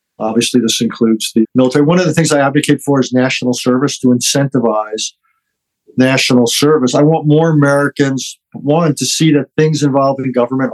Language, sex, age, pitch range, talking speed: English, male, 50-69, 120-135 Hz, 175 wpm